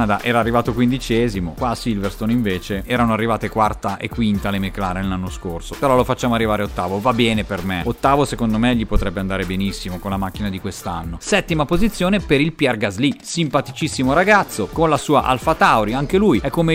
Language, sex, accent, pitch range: Italian, male, native, 105-145 Hz